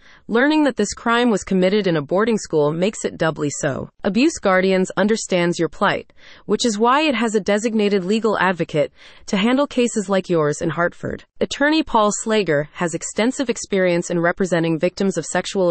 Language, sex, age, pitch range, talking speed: English, female, 30-49, 175-230 Hz, 175 wpm